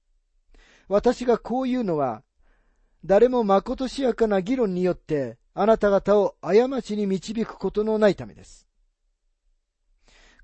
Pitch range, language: 165-220 Hz, Japanese